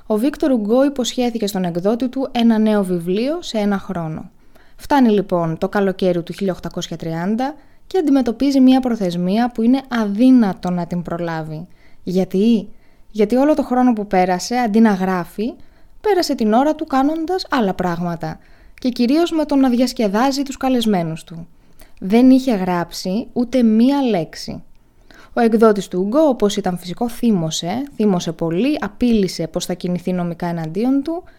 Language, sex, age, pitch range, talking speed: Greek, female, 20-39, 185-260 Hz, 150 wpm